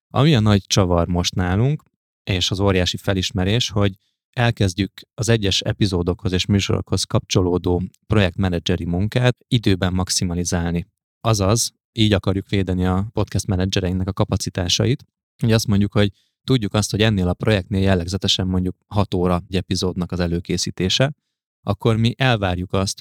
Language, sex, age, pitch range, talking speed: Hungarian, male, 20-39, 90-110 Hz, 140 wpm